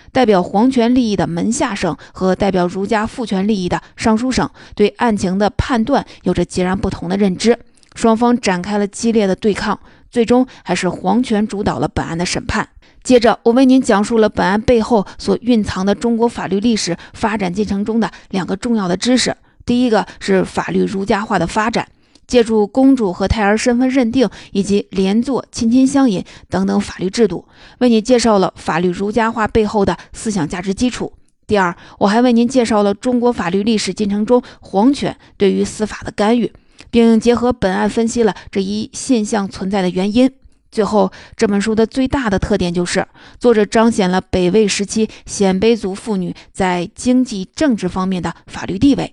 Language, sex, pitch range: Chinese, female, 190-235 Hz